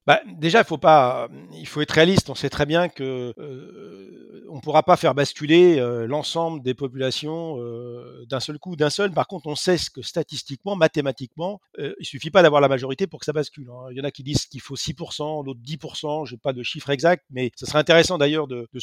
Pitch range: 140-185 Hz